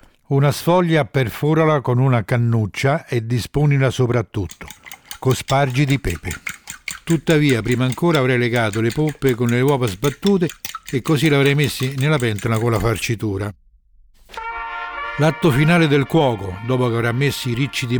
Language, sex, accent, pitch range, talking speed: Italian, male, native, 115-145 Hz, 145 wpm